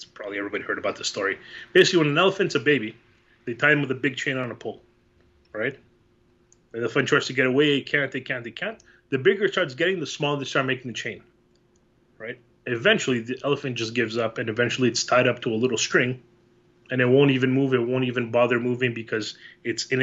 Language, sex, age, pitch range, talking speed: English, male, 30-49, 120-145 Hz, 230 wpm